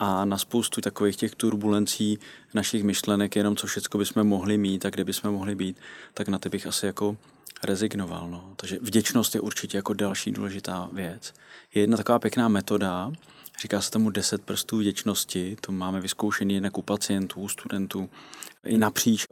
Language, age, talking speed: Czech, 20-39, 170 wpm